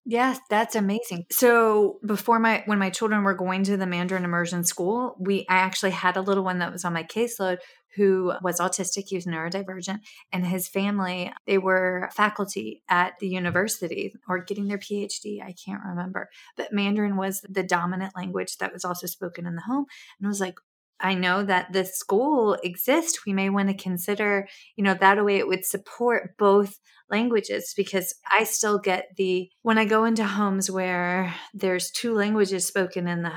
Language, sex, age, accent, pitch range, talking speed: English, female, 30-49, American, 175-205 Hz, 190 wpm